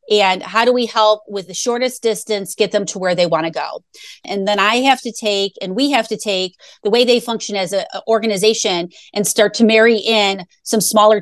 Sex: female